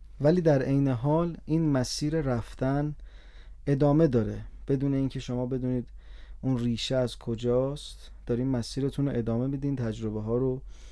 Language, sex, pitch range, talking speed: Persian, male, 110-135 Hz, 135 wpm